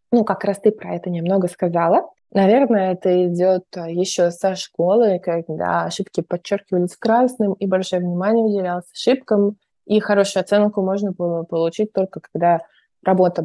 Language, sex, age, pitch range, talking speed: Russian, female, 20-39, 175-215 Hz, 145 wpm